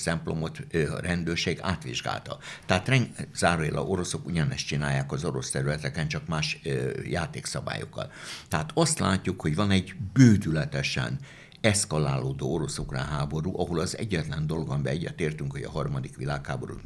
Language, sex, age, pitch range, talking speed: Hungarian, male, 60-79, 75-105 Hz, 130 wpm